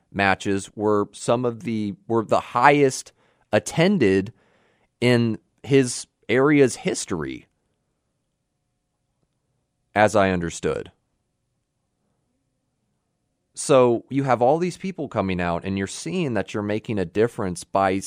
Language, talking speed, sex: English, 105 wpm, male